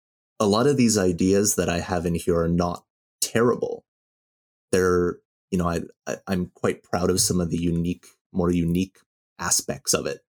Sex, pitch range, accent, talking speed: male, 85-95 Hz, American, 180 wpm